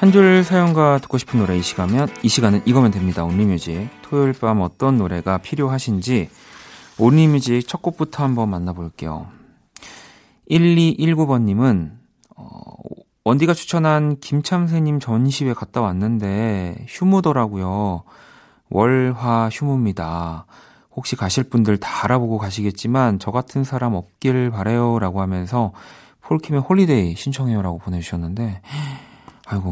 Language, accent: Korean, native